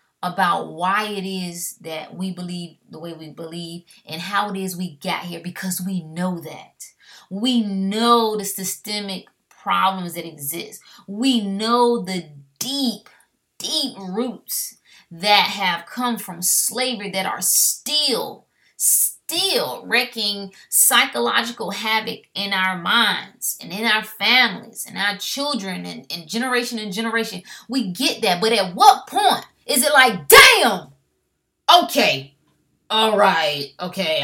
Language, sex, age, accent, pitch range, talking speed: English, female, 20-39, American, 180-255 Hz, 135 wpm